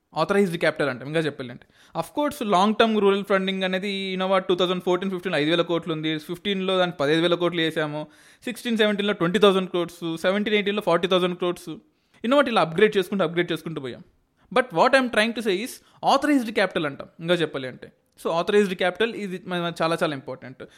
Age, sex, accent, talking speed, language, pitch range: 20-39, male, native, 180 wpm, Telugu, 165-210 Hz